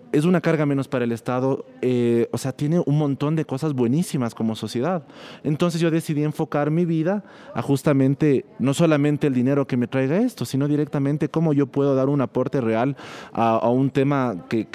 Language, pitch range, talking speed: Spanish, 125-155 Hz, 195 wpm